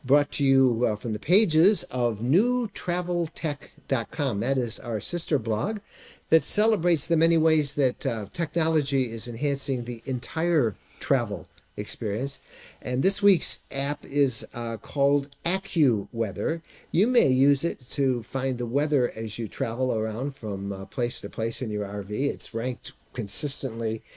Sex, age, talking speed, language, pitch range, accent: male, 50-69, 145 wpm, English, 115-145 Hz, American